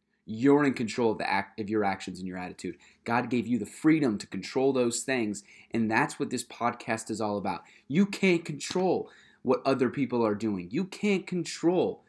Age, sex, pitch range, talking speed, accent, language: 30-49, male, 110-145 Hz, 200 wpm, American, English